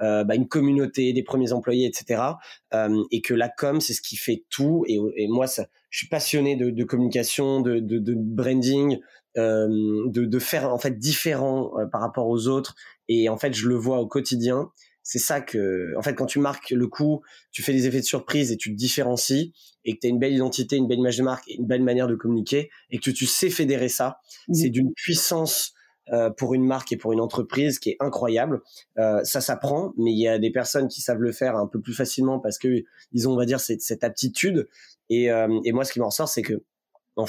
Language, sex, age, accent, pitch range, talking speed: French, male, 20-39, French, 115-135 Hz, 240 wpm